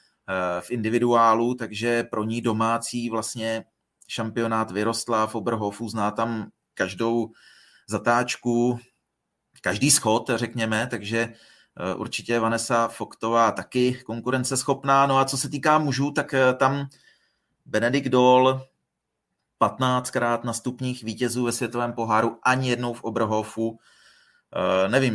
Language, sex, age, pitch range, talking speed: Czech, male, 30-49, 110-125 Hz, 105 wpm